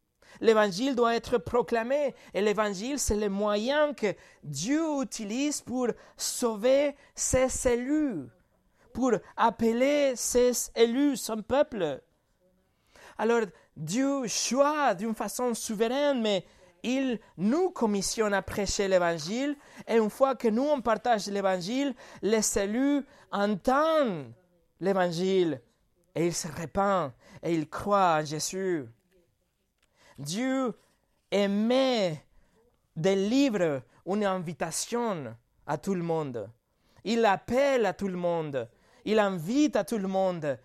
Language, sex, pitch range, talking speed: French, male, 180-245 Hz, 115 wpm